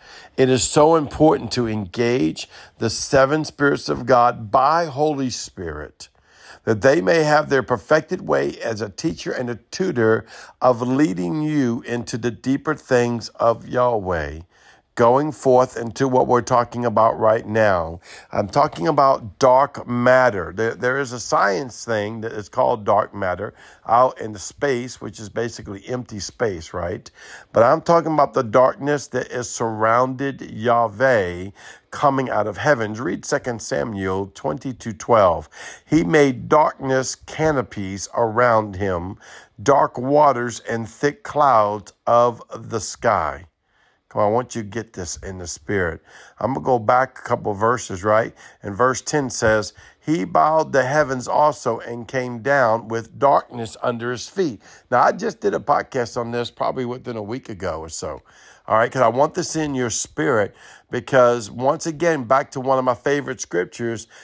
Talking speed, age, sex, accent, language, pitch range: 165 wpm, 50-69, male, American, English, 110-140 Hz